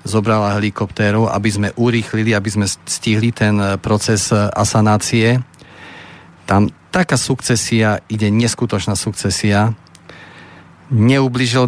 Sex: male